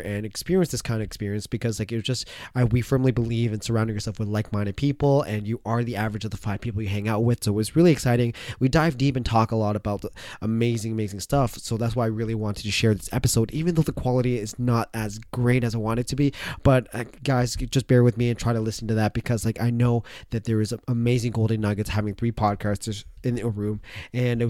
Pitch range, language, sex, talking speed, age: 110-125 Hz, English, male, 260 wpm, 20-39